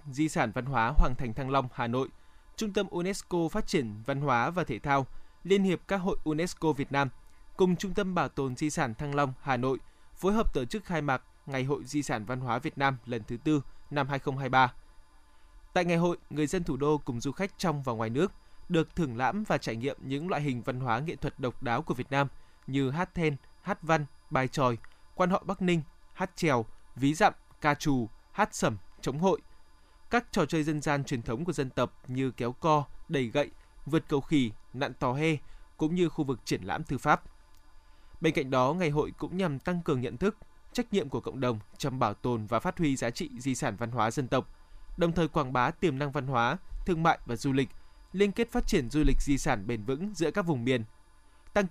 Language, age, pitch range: Vietnamese, 20-39, 125-165 Hz